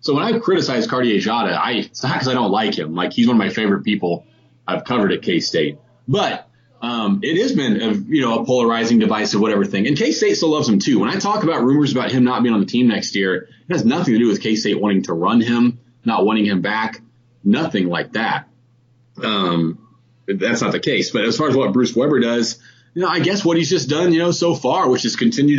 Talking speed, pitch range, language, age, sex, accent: 245 wpm, 115-150 Hz, English, 30-49, male, American